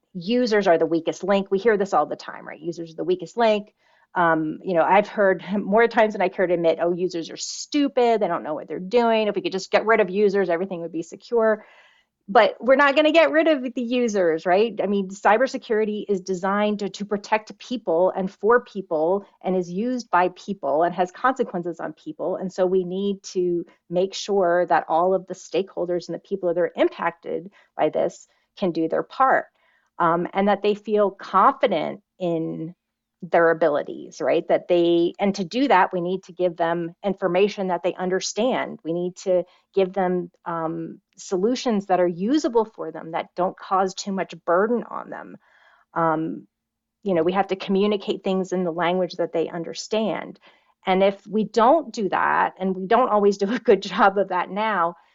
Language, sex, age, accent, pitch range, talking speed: English, female, 30-49, American, 175-210 Hz, 200 wpm